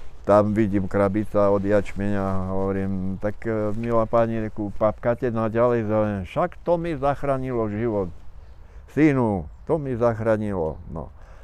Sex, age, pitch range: male, 60-79, 90-125 Hz